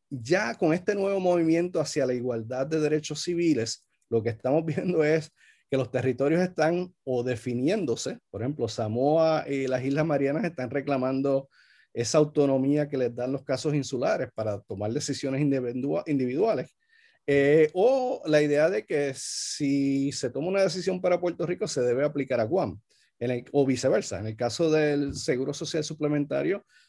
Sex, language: male, Spanish